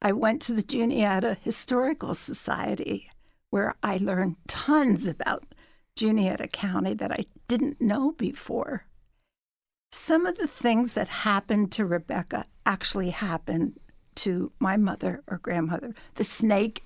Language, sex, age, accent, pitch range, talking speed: English, female, 60-79, American, 190-240 Hz, 130 wpm